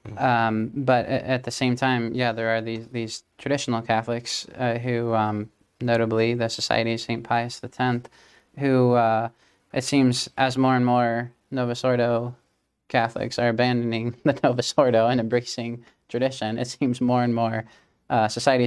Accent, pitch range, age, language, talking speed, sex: American, 115-125 Hz, 20-39, English, 160 wpm, male